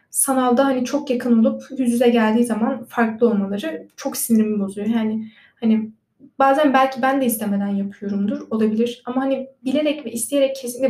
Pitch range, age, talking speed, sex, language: 220-265 Hz, 10-29, 160 wpm, female, Turkish